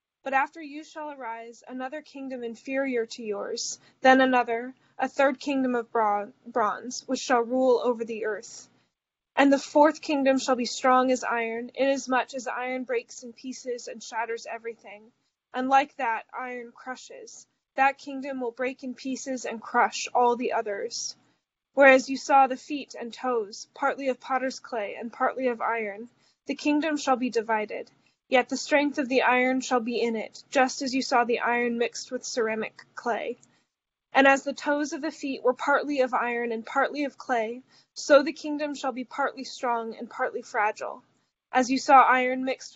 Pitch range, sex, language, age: 235-270 Hz, female, English, 20-39